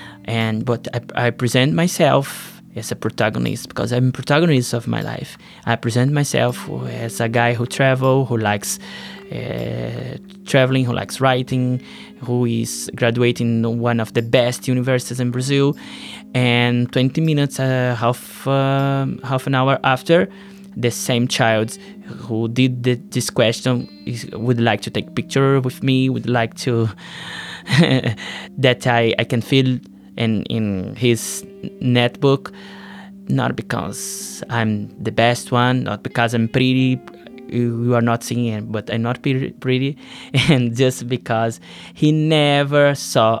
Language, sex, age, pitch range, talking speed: English, male, 20-39, 115-135 Hz, 145 wpm